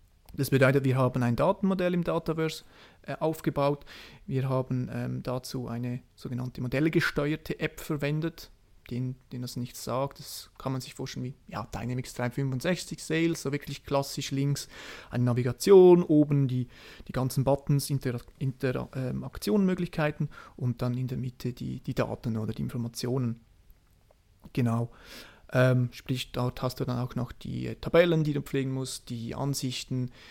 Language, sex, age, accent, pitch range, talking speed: German, male, 30-49, German, 115-140 Hz, 150 wpm